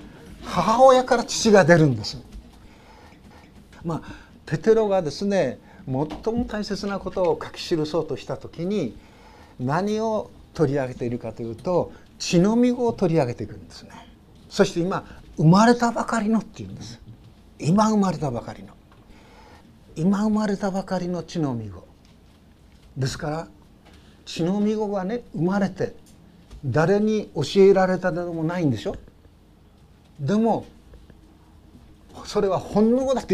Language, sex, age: Japanese, male, 50-69